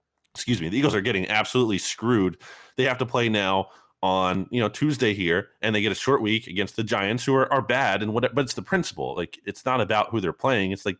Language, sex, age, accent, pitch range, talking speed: English, male, 30-49, American, 95-125 Hz, 250 wpm